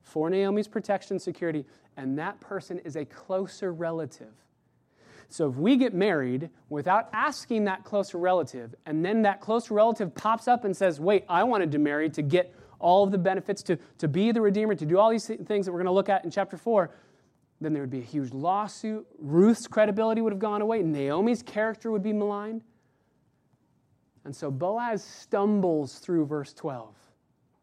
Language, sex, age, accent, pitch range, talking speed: English, male, 30-49, American, 140-205 Hz, 185 wpm